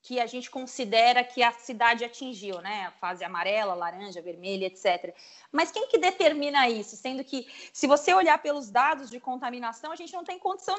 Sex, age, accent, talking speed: female, 20-39, Brazilian, 190 wpm